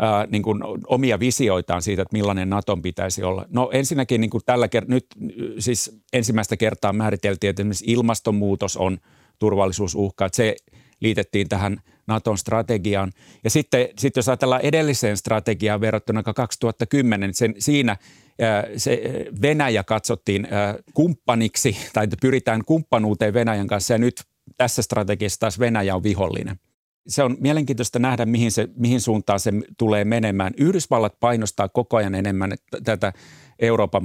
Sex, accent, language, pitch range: male, native, Finnish, 100-120 Hz